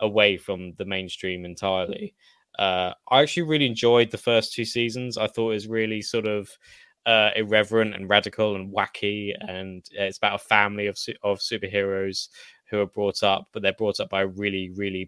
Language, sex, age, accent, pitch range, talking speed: English, male, 10-29, British, 100-120 Hz, 185 wpm